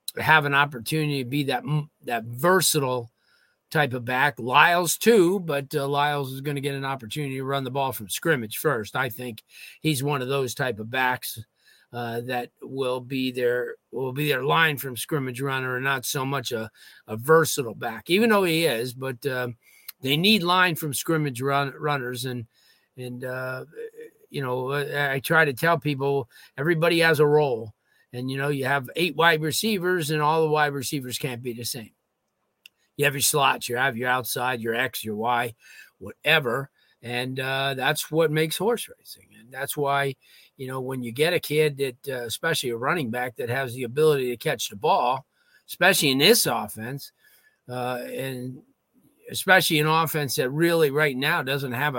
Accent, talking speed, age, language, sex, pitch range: American, 185 wpm, 40-59, English, male, 125-150 Hz